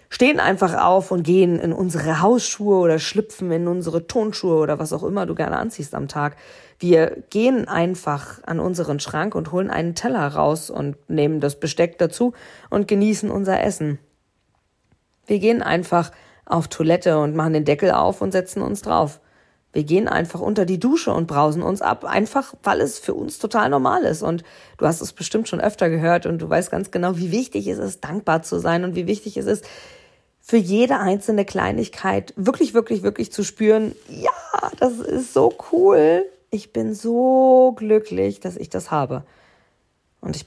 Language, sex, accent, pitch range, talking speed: German, female, German, 160-215 Hz, 180 wpm